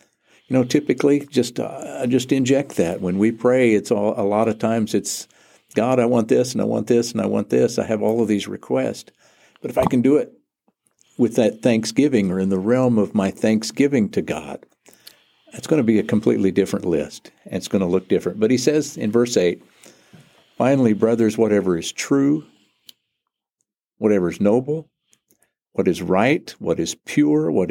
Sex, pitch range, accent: male, 105-135 Hz, American